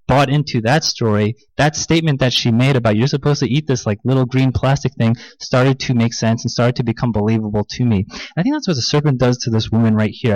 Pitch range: 120-150 Hz